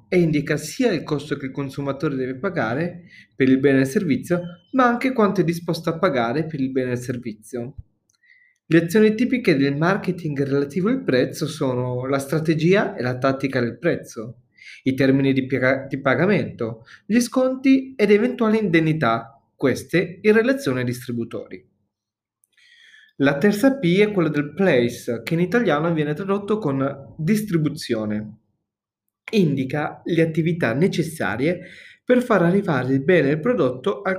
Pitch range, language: 125-195 Hz, Italian